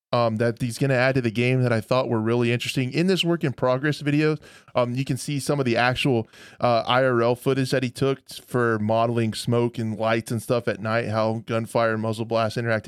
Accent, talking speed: American, 230 wpm